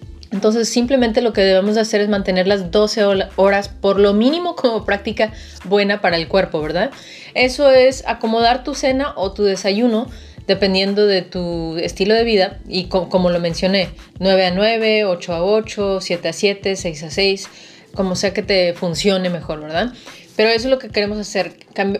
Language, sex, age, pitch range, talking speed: Spanish, female, 30-49, 190-220 Hz, 185 wpm